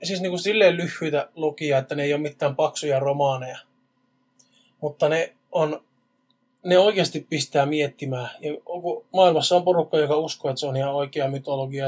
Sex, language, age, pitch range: male, Finnish, 20-39, 140-155 Hz